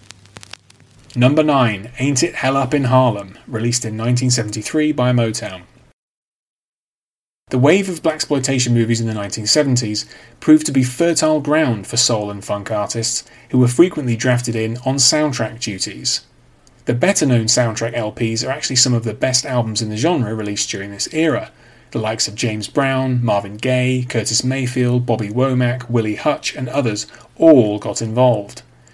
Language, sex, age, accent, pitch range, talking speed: English, male, 30-49, British, 110-130 Hz, 155 wpm